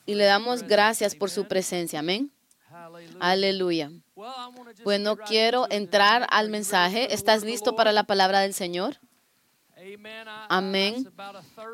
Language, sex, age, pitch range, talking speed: Spanish, female, 30-49, 195-235 Hz, 110 wpm